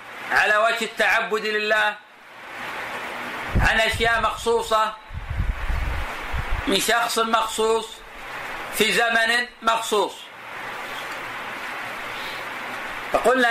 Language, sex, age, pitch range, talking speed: Arabic, male, 40-59, 220-255 Hz, 60 wpm